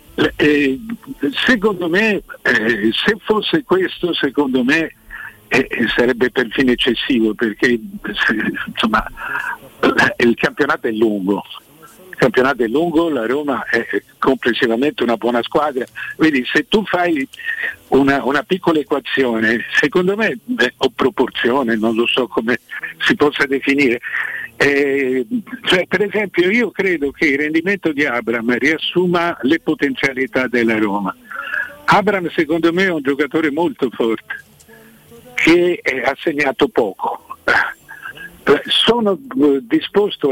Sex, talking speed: male, 115 wpm